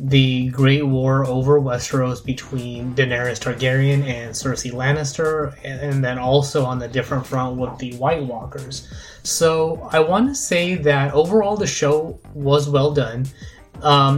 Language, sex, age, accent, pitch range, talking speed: English, male, 20-39, American, 125-145 Hz, 150 wpm